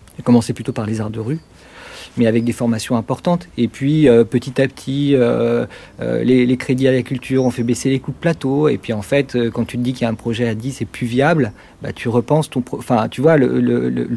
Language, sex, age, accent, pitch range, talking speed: French, male, 40-59, French, 115-140 Hz, 240 wpm